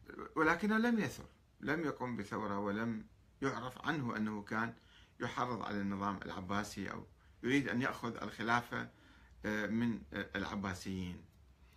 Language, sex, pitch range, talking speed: Arabic, male, 95-125 Hz, 110 wpm